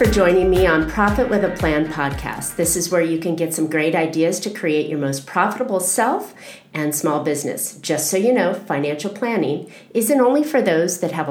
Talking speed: 205 wpm